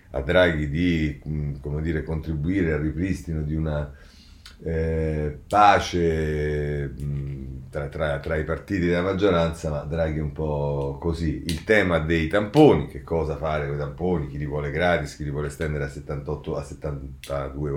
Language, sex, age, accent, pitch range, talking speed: Italian, male, 40-59, native, 75-105 Hz, 160 wpm